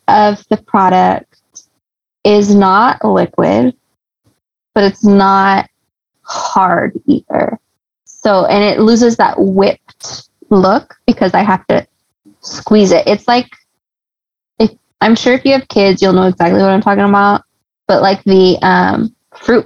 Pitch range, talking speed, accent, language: 185-225 Hz, 135 wpm, American, English